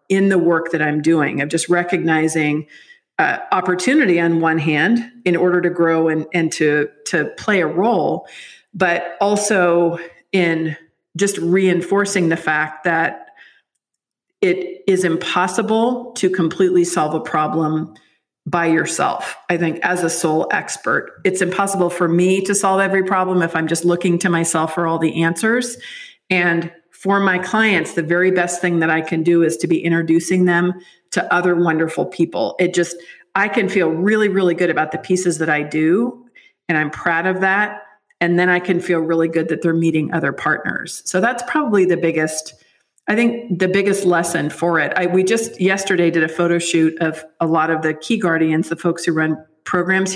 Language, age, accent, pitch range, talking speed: English, 50-69, American, 165-190 Hz, 180 wpm